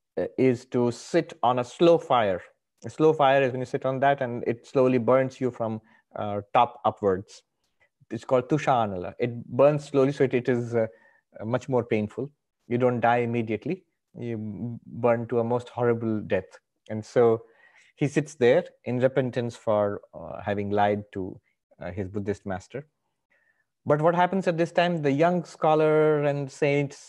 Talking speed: 170 wpm